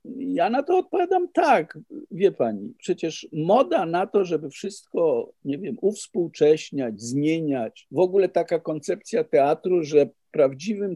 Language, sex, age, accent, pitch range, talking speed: Polish, male, 50-69, native, 130-180 Hz, 130 wpm